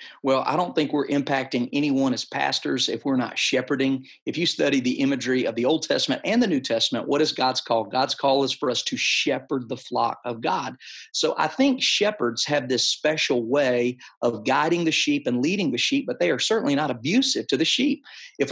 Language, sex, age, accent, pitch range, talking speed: English, male, 40-59, American, 130-205 Hz, 215 wpm